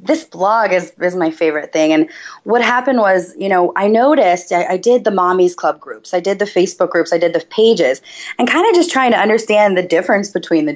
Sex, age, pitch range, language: female, 20-39, 170-260 Hz, English